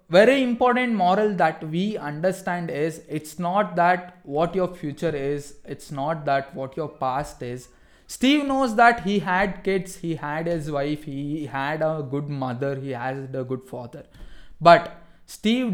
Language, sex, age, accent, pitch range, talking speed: English, male, 20-39, Indian, 155-200 Hz, 165 wpm